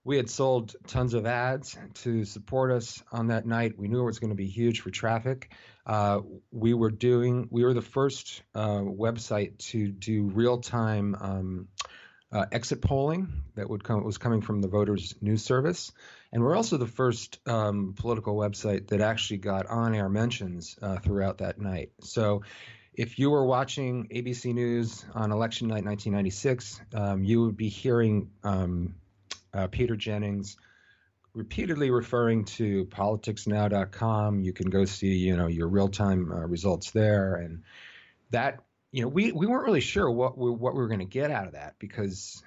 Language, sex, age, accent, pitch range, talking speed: English, male, 40-59, American, 100-120 Hz, 170 wpm